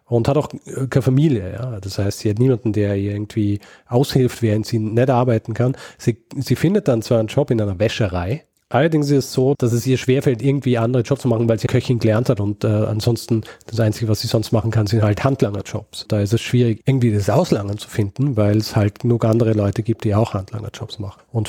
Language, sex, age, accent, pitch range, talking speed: German, male, 40-59, German, 110-130 Hz, 230 wpm